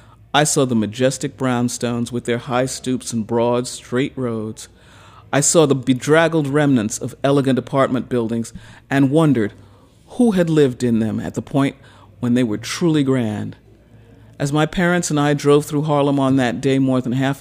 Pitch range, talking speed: 115-140 Hz, 175 wpm